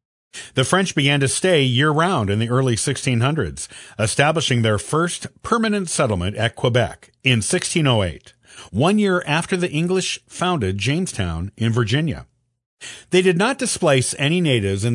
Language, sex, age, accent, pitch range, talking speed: English, male, 50-69, American, 110-160 Hz, 140 wpm